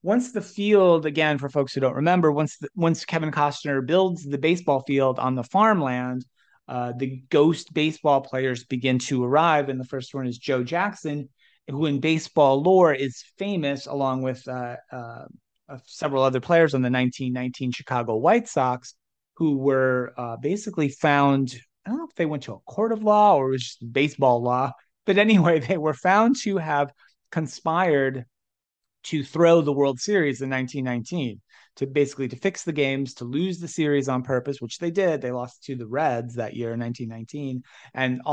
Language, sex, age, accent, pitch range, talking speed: English, male, 30-49, American, 125-155 Hz, 185 wpm